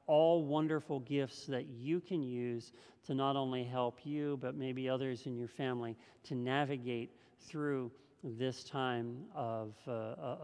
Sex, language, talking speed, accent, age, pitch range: male, English, 145 wpm, American, 50-69, 125-150 Hz